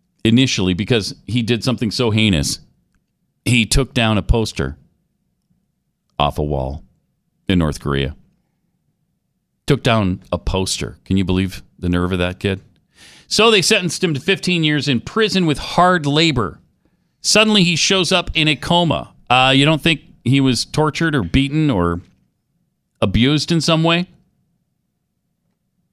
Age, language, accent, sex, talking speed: 40-59, English, American, male, 145 wpm